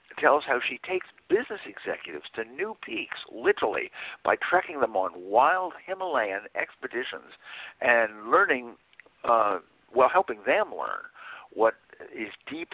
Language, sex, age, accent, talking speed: English, male, 60-79, American, 125 wpm